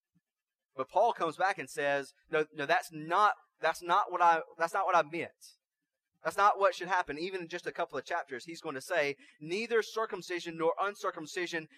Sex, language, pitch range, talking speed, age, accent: male, English, 160-200 Hz, 200 wpm, 20-39, American